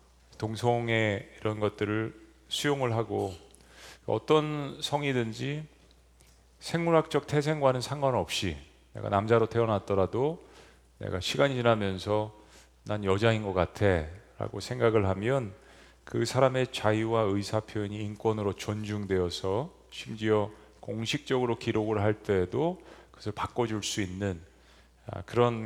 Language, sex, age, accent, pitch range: Korean, male, 40-59, native, 95-125 Hz